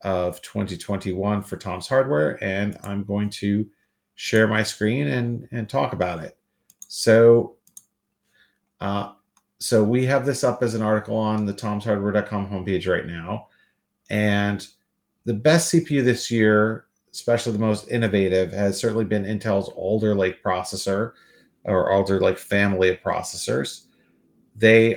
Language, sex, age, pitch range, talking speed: English, male, 40-59, 100-115 Hz, 135 wpm